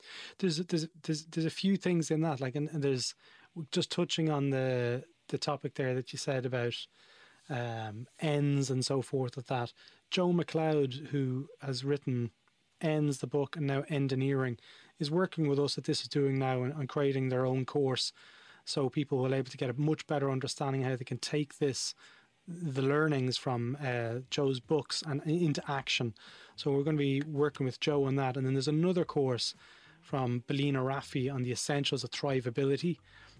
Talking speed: 185 wpm